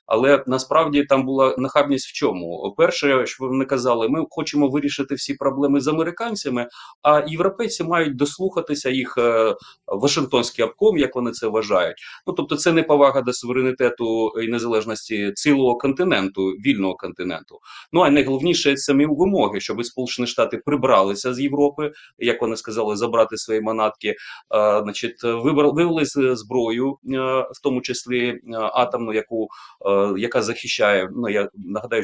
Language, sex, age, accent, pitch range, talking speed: Ukrainian, male, 30-49, native, 110-145 Hz, 135 wpm